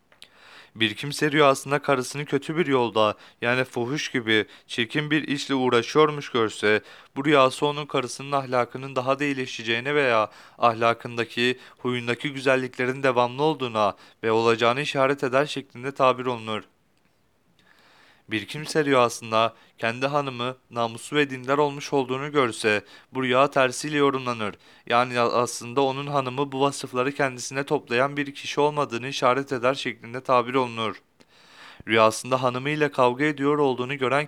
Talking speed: 130 wpm